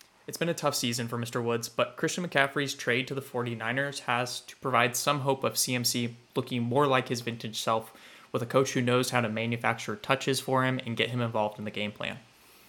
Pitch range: 115-130 Hz